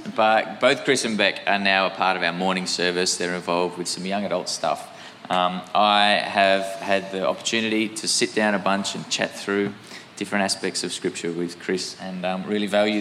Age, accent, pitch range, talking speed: 20-39, Australian, 95-110 Hz, 205 wpm